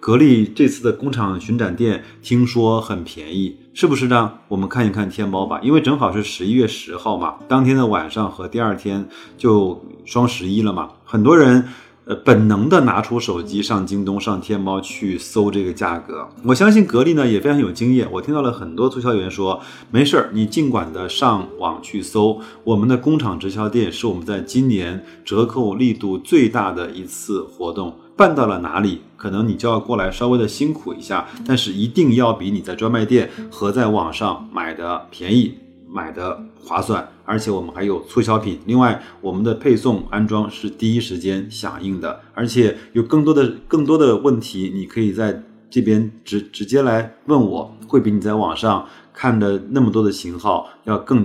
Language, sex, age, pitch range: Chinese, male, 30-49, 100-120 Hz